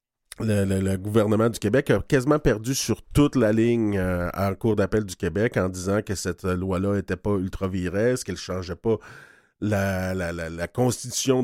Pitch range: 100-120 Hz